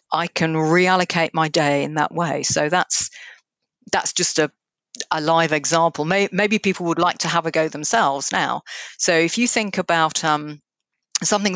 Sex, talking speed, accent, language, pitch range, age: female, 170 wpm, British, English, 155-200 Hz, 50-69